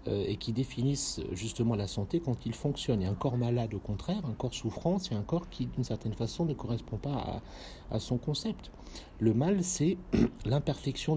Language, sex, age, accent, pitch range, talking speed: French, male, 60-79, French, 100-130 Hz, 195 wpm